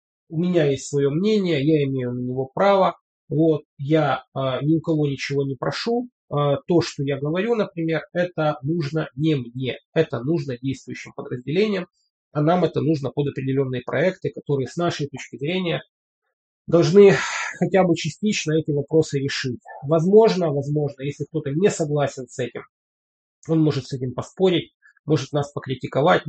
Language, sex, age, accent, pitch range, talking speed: Russian, male, 30-49, native, 135-165 Hz, 155 wpm